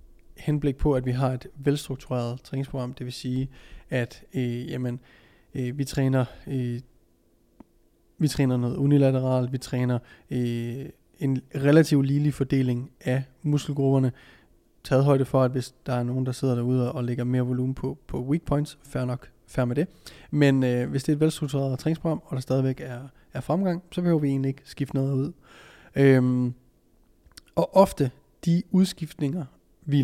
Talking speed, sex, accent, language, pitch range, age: 165 wpm, male, native, Danish, 125-145 Hz, 20-39